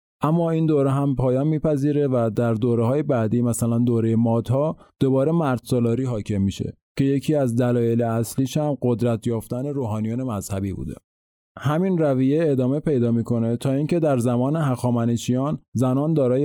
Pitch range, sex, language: 115-140 Hz, male, English